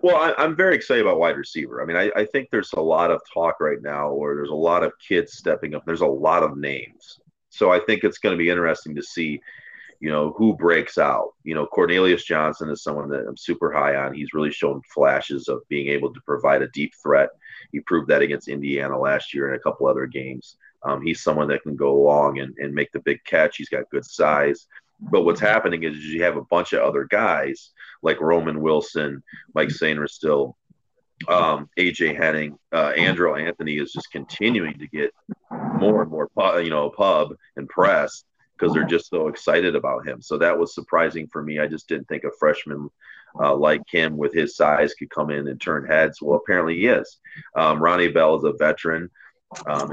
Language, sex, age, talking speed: English, male, 30-49, 215 wpm